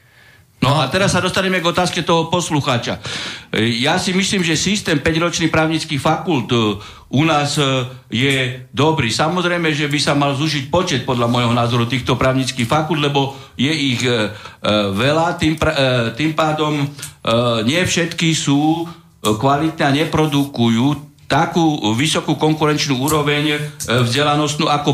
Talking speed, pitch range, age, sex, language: 130 wpm, 120-150 Hz, 60-79, male, Slovak